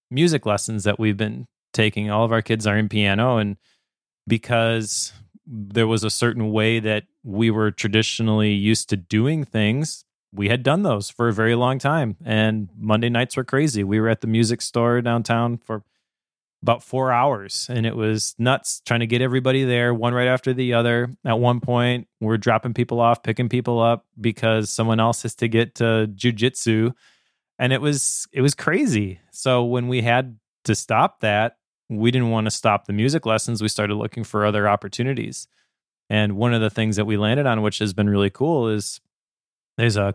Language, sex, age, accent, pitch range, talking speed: English, male, 30-49, American, 110-125 Hz, 195 wpm